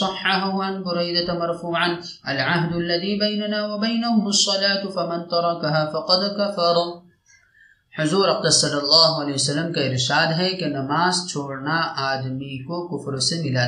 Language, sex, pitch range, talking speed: Arabic, male, 145-185 Hz, 125 wpm